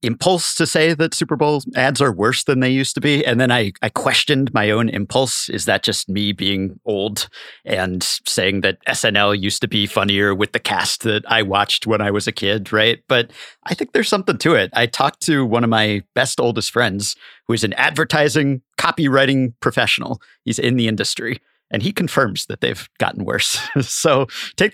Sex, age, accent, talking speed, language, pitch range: male, 40-59, American, 200 wpm, English, 105-140 Hz